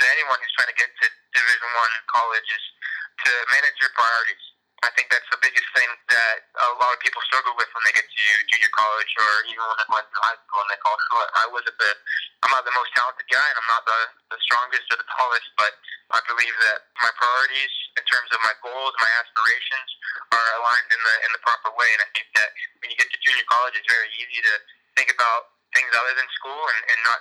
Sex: male